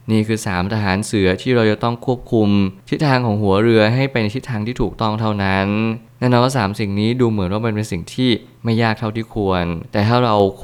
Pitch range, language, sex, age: 100-120 Hz, Thai, male, 20-39